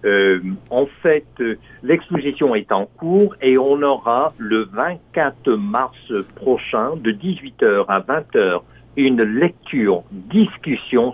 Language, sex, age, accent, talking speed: French, male, 60-79, French, 115 wpm